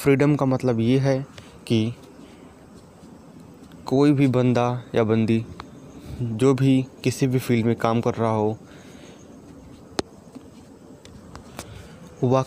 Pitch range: 115-130 Hz